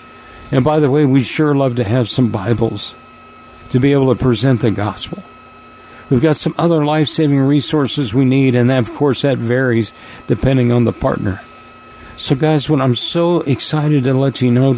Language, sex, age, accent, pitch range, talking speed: English, male, 50-69, American, 120-150 Hz, 185 wpm